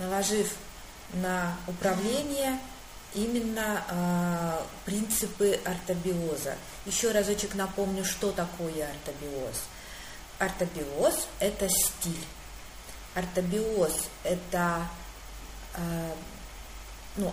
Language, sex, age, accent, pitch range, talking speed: Russian, female, 30-49, native, 170-210 Hz, 75 wpm